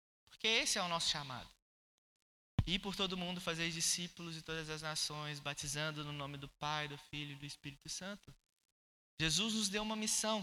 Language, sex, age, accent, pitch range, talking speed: Gujarati, male, 20-39, Brazilian, 155-215 Hz, 190 wpm